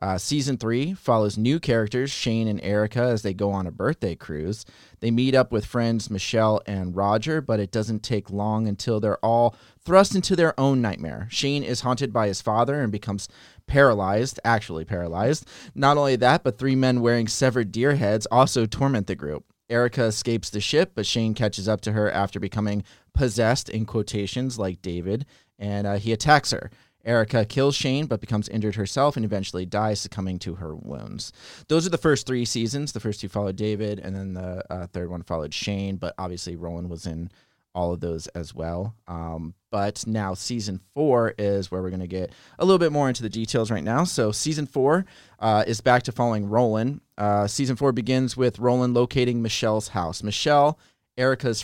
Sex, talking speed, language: male, 195 wpm, English